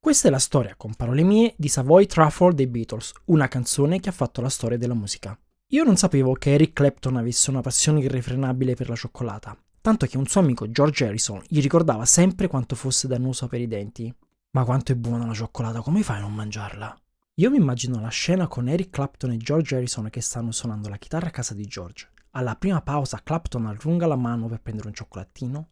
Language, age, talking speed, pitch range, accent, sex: Italian, 20-39, 215 wpm, 115-150 Hz, native, male